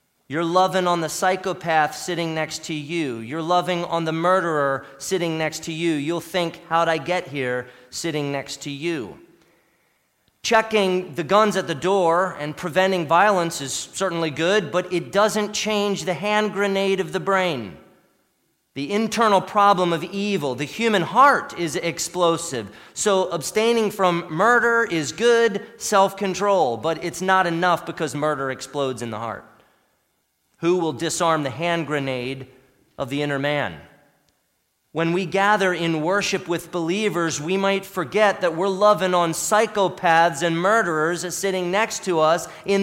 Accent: American